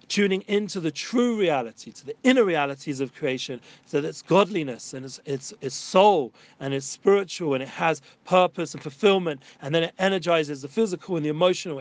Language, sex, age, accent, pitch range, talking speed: English, male, 40-59, British, 150-180 Hz, 195 wpm